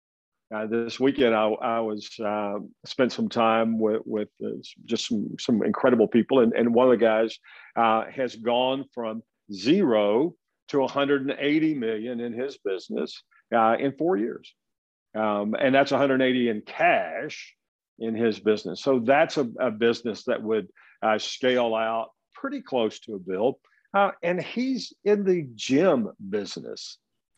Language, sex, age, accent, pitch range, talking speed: English, male, 50-69, American, 110-135 Hz, 155 wpm